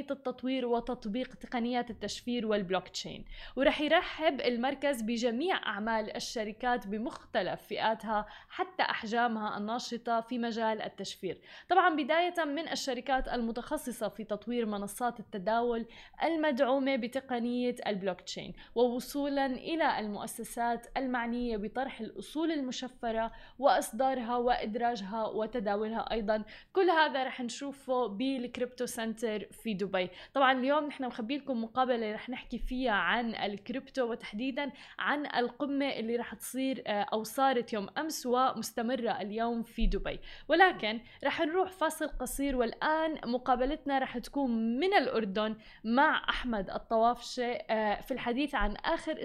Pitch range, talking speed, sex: 220-270 Hz, 115 wpm, female